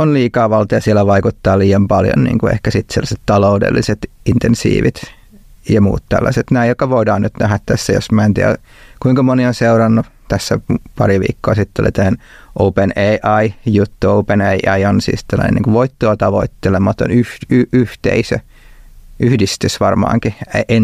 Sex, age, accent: male, 30-49, native